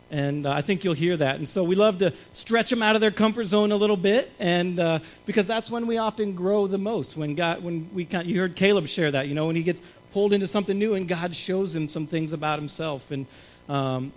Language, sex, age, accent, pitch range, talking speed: English, male, 40-59, American, 155-205 Hz, 260 wpm